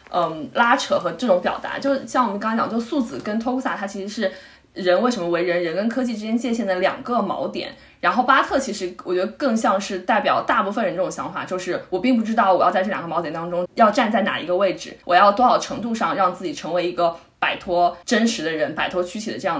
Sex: female